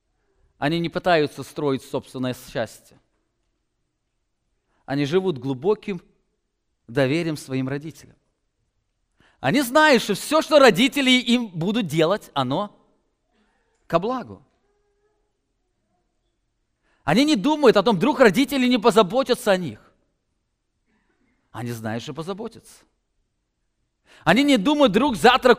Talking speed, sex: 105 wpm, male